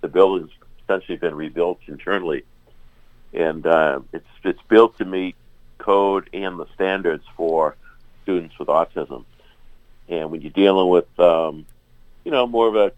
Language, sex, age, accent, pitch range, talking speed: English, male, 60-79, American, 80-115 Hz, 150 wpm